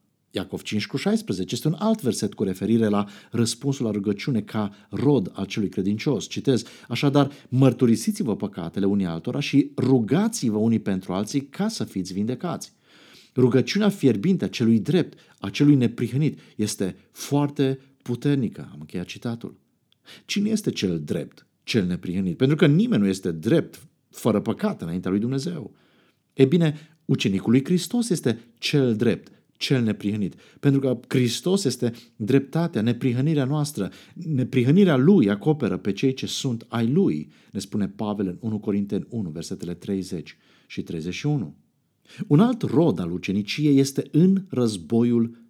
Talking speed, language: 145 wpm, Romanian